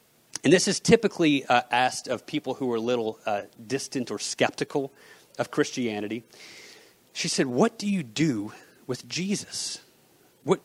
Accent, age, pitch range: American, 30-49, 130-170 Hz